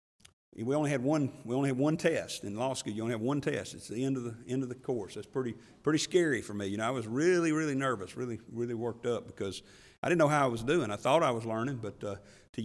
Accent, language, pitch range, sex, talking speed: American, English, 115-145 Hz, male, 280 wpm